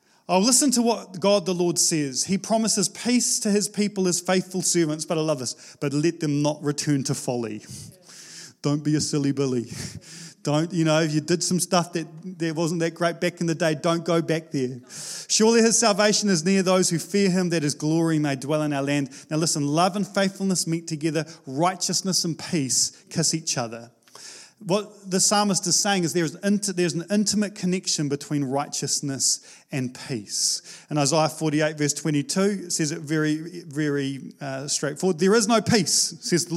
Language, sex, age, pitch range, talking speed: English, male, 30-49, 150-190 Hz, 190 wpm